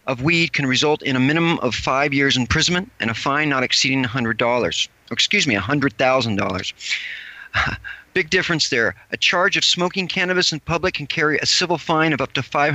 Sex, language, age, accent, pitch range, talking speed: male, English, 40-59, American, 125-155 Hz, 205 wpm